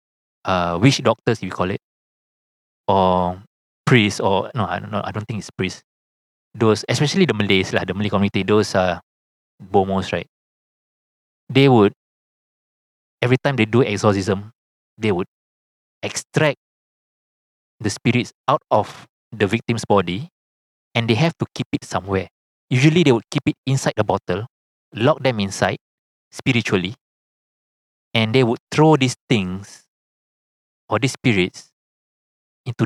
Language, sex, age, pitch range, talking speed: English, male, 20-39, 95-125 Hz, 140 wpm